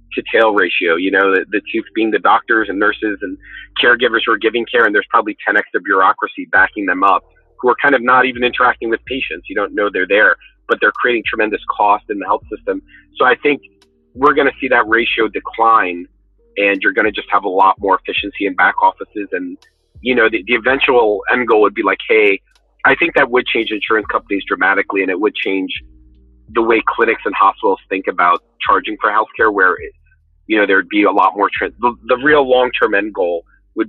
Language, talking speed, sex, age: English, 220 wpm, male, 40-59